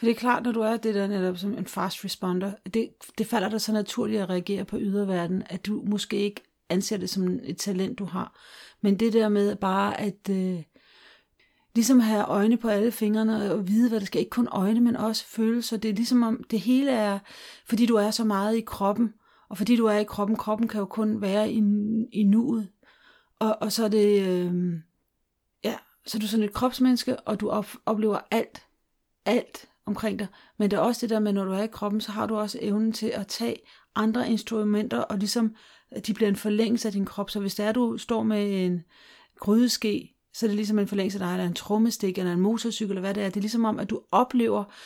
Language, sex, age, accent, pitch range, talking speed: Danish, female, 40-59, native, 195-225 Hz, 235 wpm